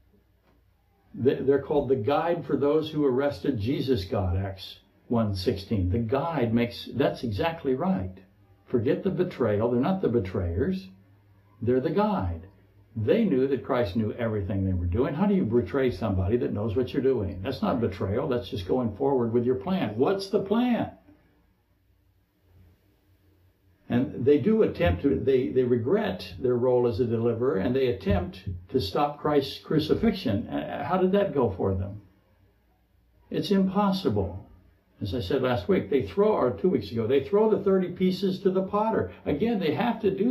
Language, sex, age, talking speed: English, male, 60-79, 170 wpm